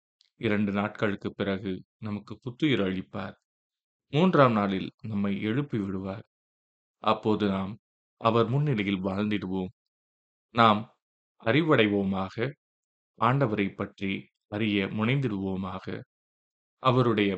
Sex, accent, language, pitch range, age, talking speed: male, native, Tamil, 95-115 Hz, 20-39, 80 wpm